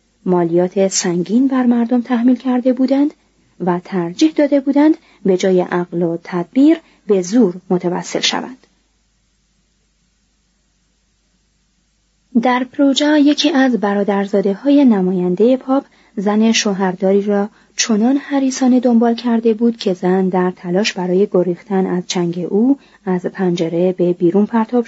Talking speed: 120 wpm